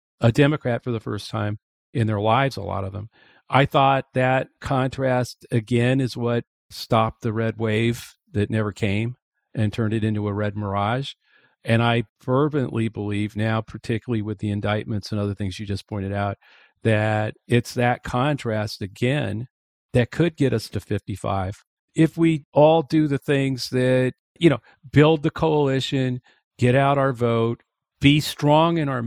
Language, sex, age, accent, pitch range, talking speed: English, male, 50-69, American, 110-150 Hz, 165 wpm